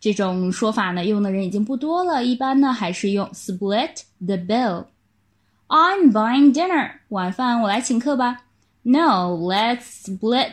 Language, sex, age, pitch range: Chinese, female, 10-29, 195-280 Hz